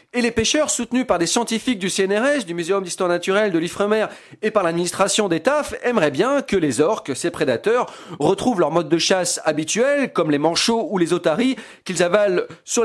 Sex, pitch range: male, 165-235 Hz